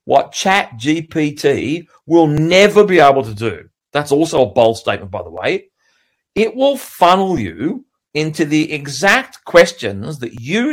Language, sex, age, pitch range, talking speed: English, male, 40-59, 125-180 Hz, 150 wpm